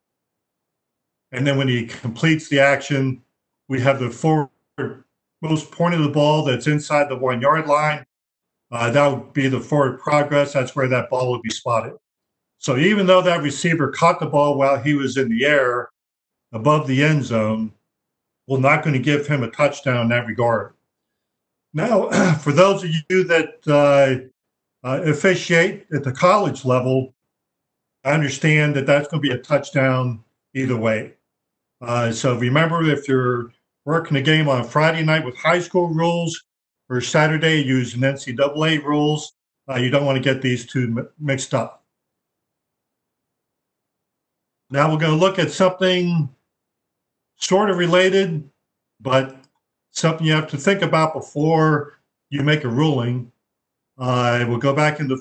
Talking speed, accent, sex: 160 wpm, American, male